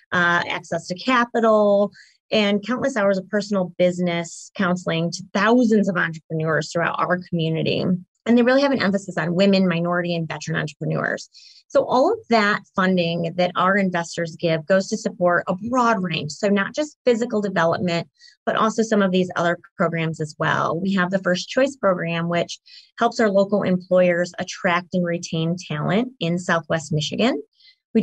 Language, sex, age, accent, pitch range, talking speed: English, female, 20-39, American, 170-210 Hz, 165 wpm